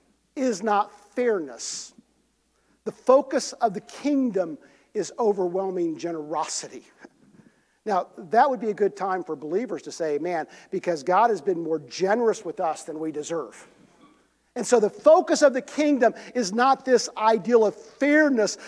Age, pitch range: 50-69, 190-245 Hz